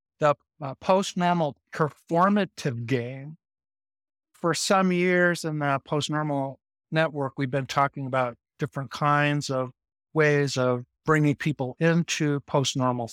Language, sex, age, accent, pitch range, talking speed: English, male, 50-69, American, 130-155 Hz, 110 wpm